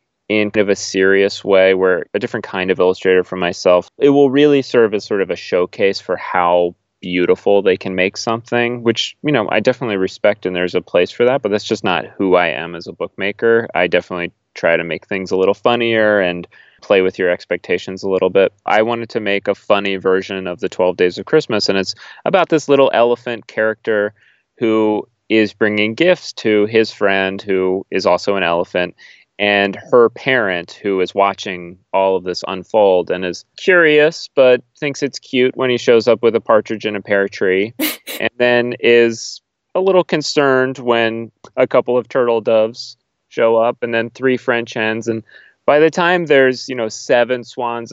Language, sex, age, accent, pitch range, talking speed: English, male, 30-49, American, 100-130 Hz, 195 wpm